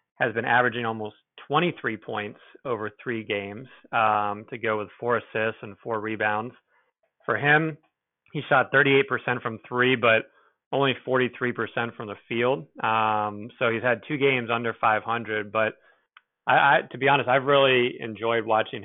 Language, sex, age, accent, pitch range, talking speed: English, male, 30-49, American, 110-125 Hz, 155 wpm